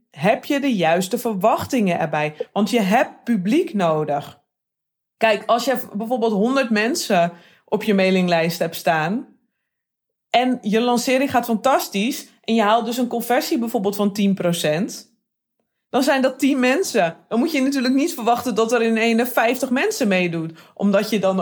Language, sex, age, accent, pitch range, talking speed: Dutch, female, 20-39, Dutch, 185-255 Hz, 160 wpm